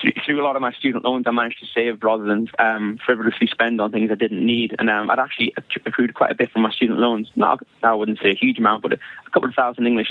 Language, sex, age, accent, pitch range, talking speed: English, male, 20-39, British, 115-135 Hz, 275 wpm